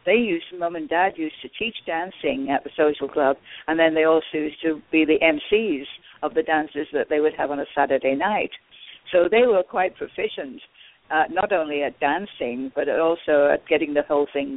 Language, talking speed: English, 205 wpm